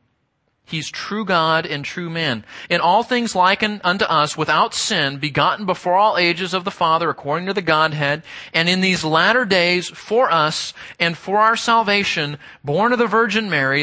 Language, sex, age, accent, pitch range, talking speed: English, male, 30-49, American, 150-220 Hz, 180 wpm